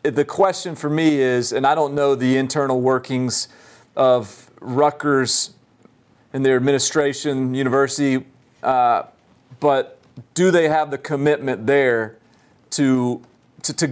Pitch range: 125-150 Hz